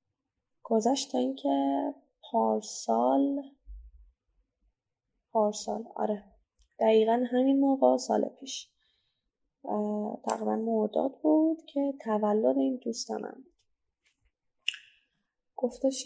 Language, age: Persian, 10-29